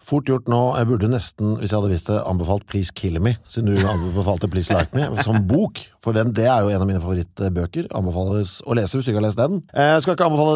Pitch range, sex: 95-125 Hz, male